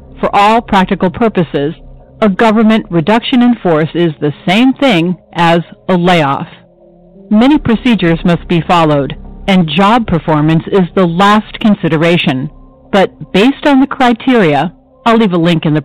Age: 50-69